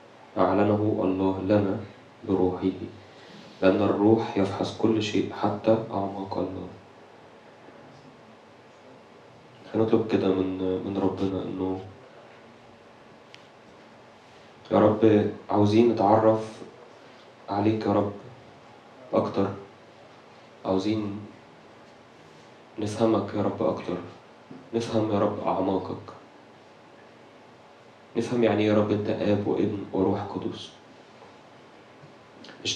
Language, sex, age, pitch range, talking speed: Arabic, male, 20-39, 95-110 Hz, 80 wpm